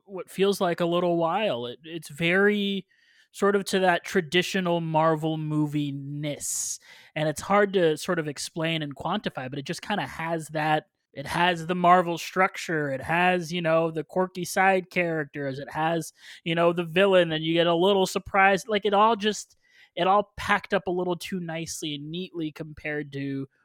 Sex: male